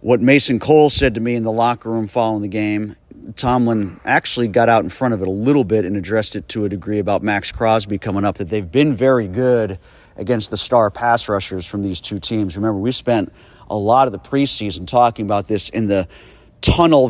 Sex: male